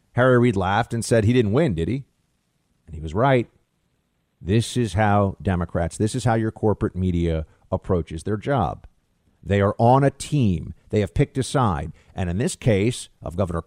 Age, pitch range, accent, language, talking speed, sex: 50-69, 115-190 Hz, American, English, 190 wpm, male